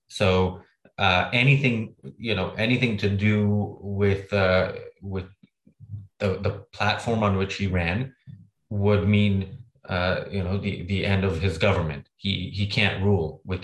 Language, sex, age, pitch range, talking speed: English, male, 20-39, 95-105 Hz, 150 wpm